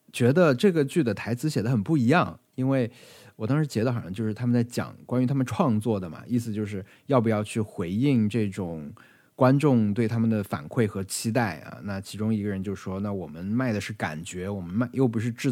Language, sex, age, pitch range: Chinese, male, 20-39, 100-130 Hz